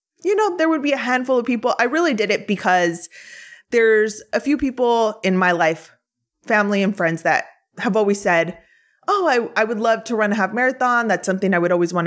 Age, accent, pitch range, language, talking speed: 20-39, American, 180-240 Hz, English, 220 wpm